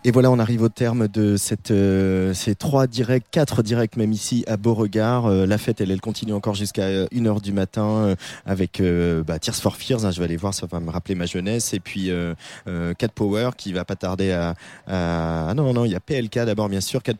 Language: French